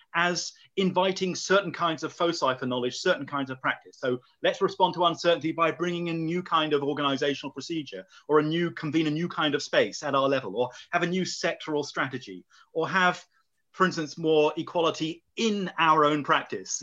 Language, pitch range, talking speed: English, 135-180 Hz, 190 wpm